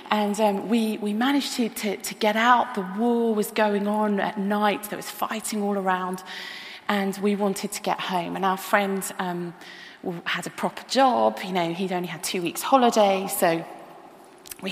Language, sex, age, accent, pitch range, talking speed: English, female, 30-49, British, 180-210 Hz, 185 wpm